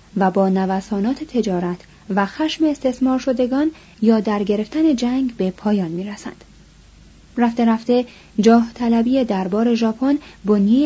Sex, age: female, 30-49